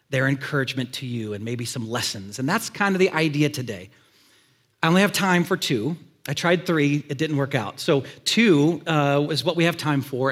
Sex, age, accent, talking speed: male, 40-59, American, 215 wpm